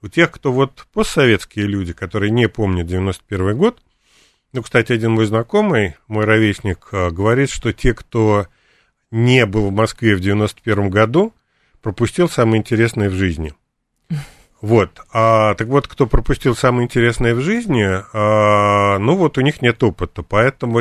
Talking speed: 155 wpm